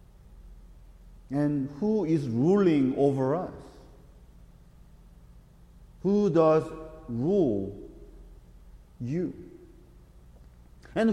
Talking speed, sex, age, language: 60 wpm, male, 50-69, English